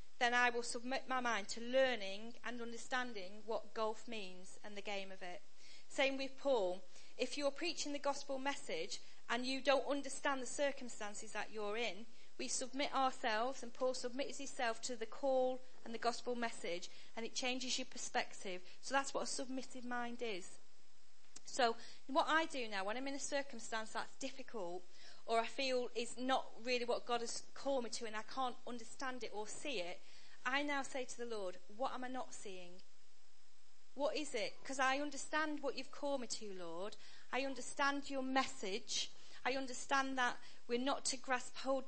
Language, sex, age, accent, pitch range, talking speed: English, female, 40-59, British, 220-265 Hz, 185 wpm